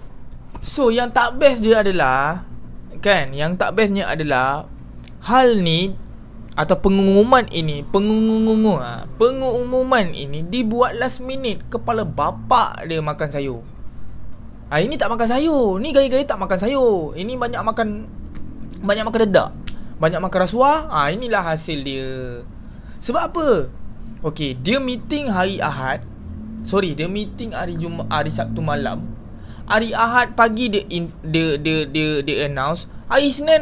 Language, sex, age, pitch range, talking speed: Malay, male, 20-39, 145-245 Hz, 140 wpm